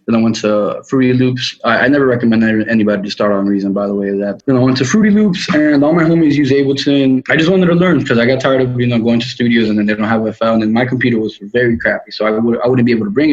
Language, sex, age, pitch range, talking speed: English, male, 20-39, 110-135 Hz, 305 wpm